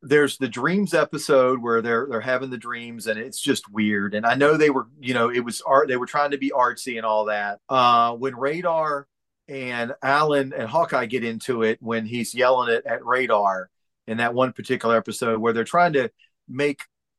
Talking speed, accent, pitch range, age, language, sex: 205 wpm, American, 115-145 Hz, 40-59, English, male